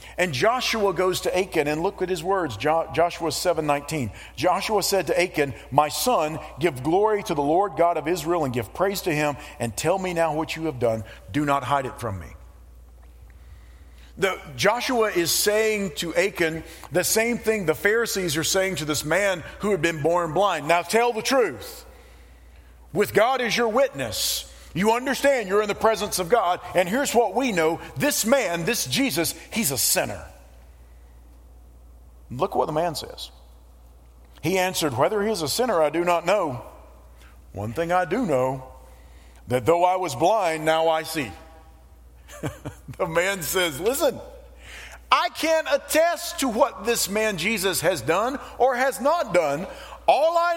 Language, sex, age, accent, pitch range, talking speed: English, male, 40-59, American, 130-215 Hz, 170 wpm